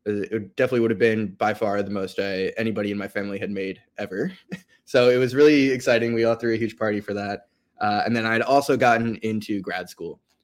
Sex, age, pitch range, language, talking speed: male, 20-39, 105-125 Hz, English, 225 wpm